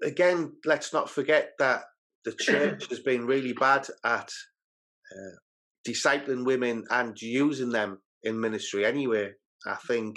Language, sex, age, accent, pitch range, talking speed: English, male, 30-49, British, 115-150 Hz, 135 wpm